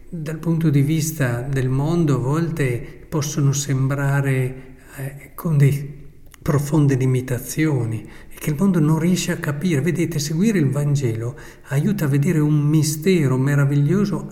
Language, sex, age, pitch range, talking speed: Italian, male, 50-69, 135-155 Hz, 140 wpm